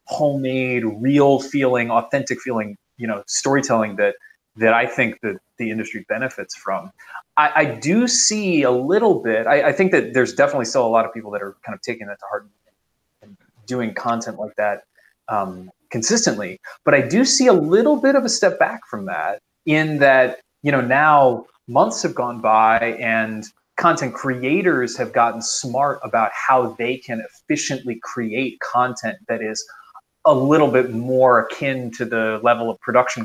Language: English